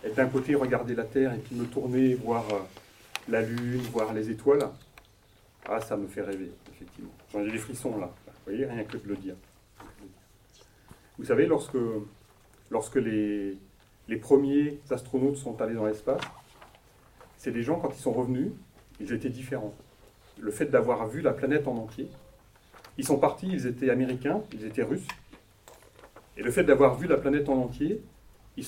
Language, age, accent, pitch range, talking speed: French, 30-49, French, 110-140 Hz, 175 wpm